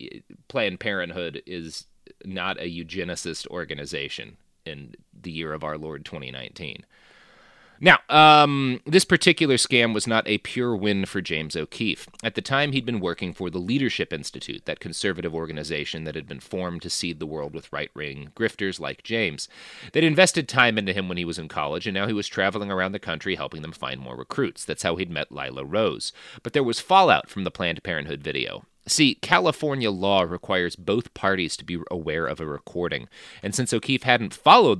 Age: 30-49